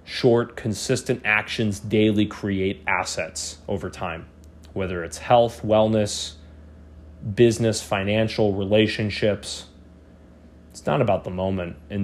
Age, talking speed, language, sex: 30-49, 105 wpm, English, male